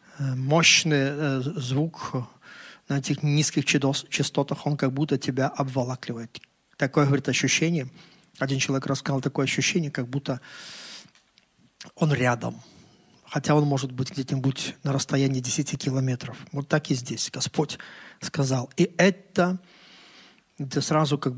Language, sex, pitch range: Russian, male, 130-155 Hz